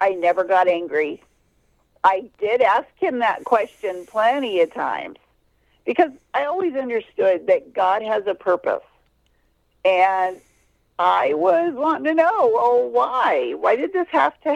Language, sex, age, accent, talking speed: English, female, 50-69, American, 145 wpm